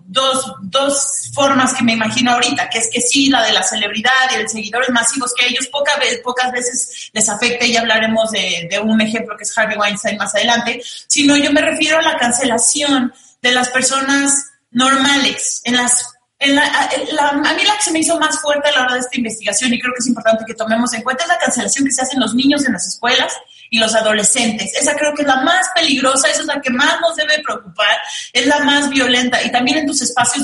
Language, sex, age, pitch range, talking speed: Spanish, female, 30-49, 235-280 Hz, 240 wpm